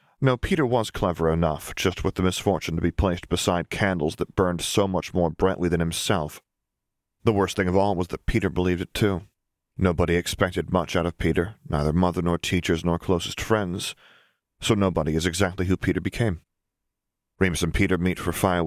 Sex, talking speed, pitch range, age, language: male, 190 wpm, 85-95 Hz, 30-49, English